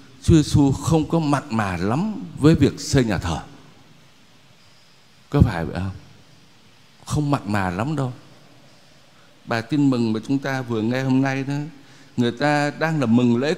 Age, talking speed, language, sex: 60-79, 170 wpm, Vietnamese, male